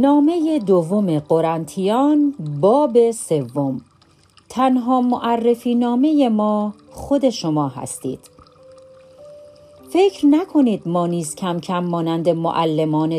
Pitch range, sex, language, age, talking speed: 155-235 Hz, female, Persian, 40-59, 90 wpm